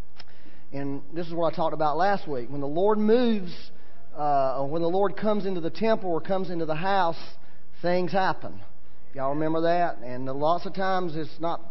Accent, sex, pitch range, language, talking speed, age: American, male, 130-185 Hz, English, 195 wpm, 40-59